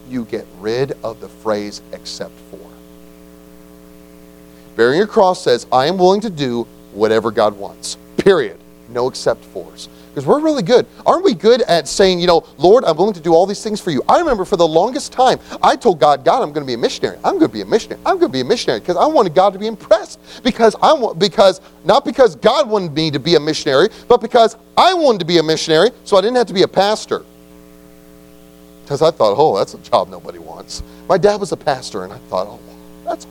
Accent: American